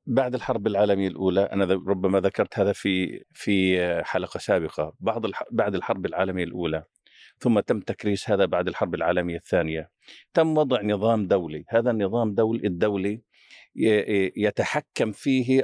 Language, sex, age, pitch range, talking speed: Arabic, male, 50-69, 100-125 Hz, 130 wpm